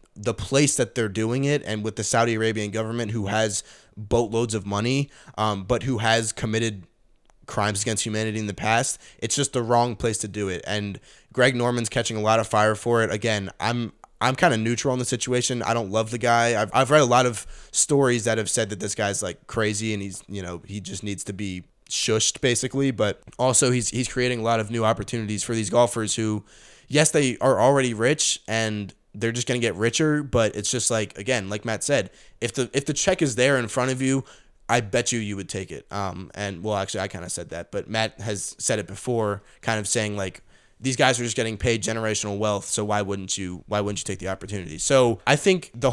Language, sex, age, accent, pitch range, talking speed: English, male, 20-39, American, 105-125 Hz, 235 wpm